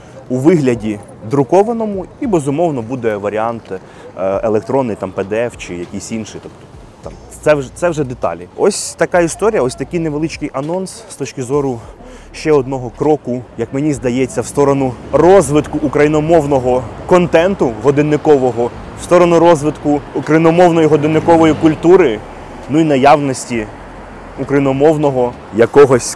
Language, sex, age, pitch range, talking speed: Ukrainian, male, 20-39, 115-155 Hz, 120 wpm